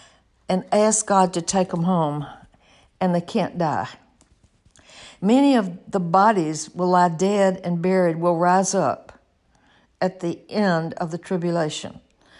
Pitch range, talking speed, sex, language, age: 170-205 Hz, 140 wpm, female, English, 60-79